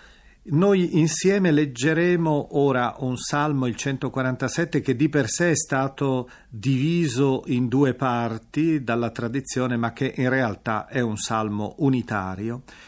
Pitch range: 115-155 Hz